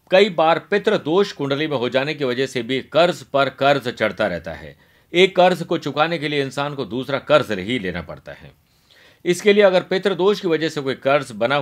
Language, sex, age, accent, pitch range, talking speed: Hindi, male, 50-69, native, 135-170 Hz, 210 wpm